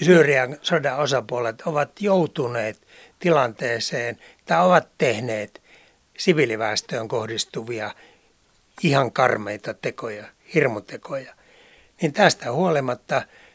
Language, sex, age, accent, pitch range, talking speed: Finnish, male, 60-79, native, 125-170 Hz, 80 wpm